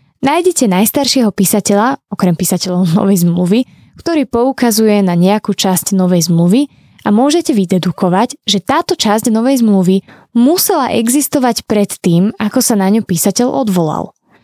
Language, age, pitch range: Slovak, 20-39, 190-250 Hz